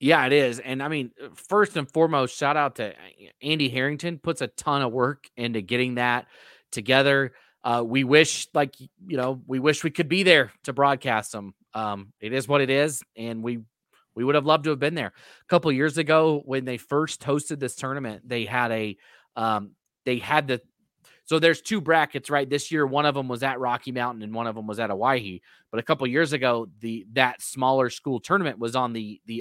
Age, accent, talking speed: 30-49, American, 220 wpm